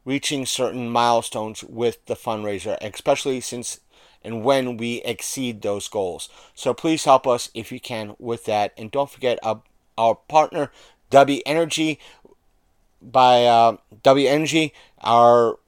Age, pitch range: 30-49, 115-145 Hz